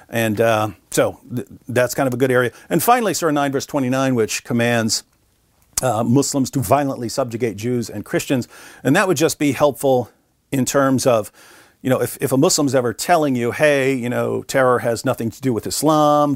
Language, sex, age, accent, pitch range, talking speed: English, male, 50-69, American, 115-140 Hz, 200 wpm